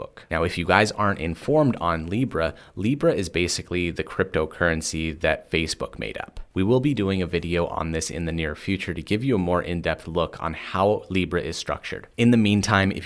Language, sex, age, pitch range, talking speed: English, male, 30-49, 85-105 Hz, 205 wpm